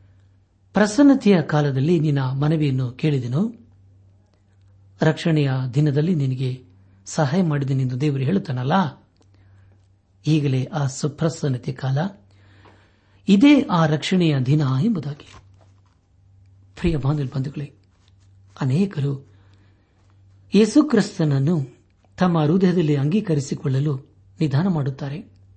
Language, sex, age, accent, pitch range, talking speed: Kannada, male, 60-79, native, 95-160 Hz, 65 wpm